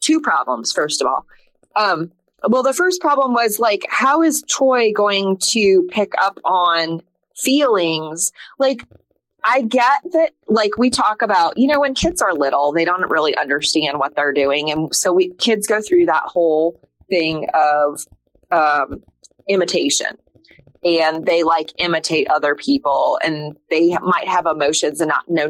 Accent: American